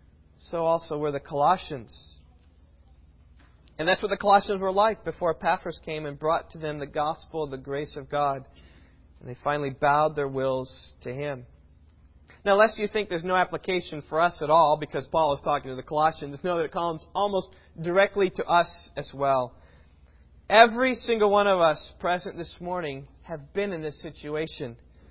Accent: American